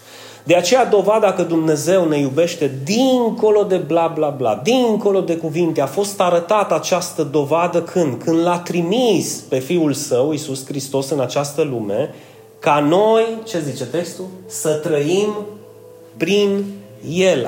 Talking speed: 140 wpm